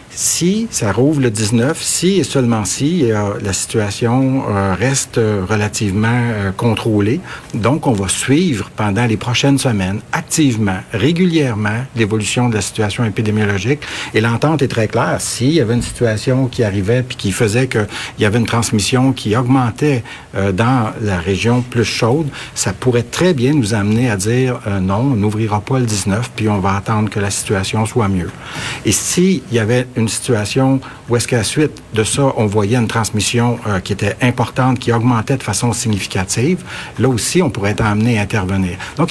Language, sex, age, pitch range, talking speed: French, male, 60-79, 105-130 Hz, 185 wpm